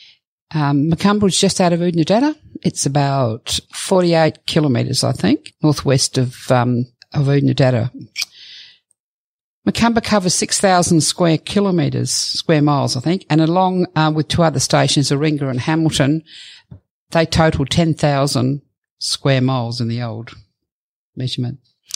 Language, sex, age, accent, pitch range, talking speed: English, female, 50-69, Australian, 135-175 Hz, 125 wpm